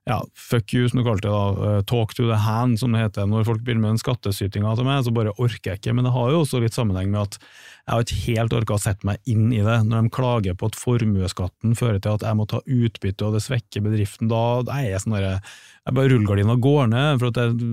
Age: 30-49